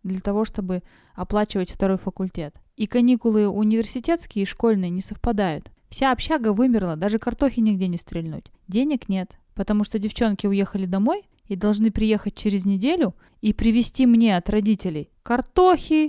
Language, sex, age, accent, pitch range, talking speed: Russian, female, 20-39, native, 190-235 Hz, 145 wpm